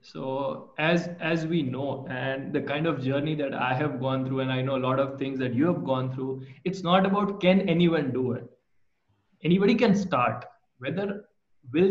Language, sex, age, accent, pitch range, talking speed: English, male, 20-39, Indian, 130-170 Hz, 195 wpm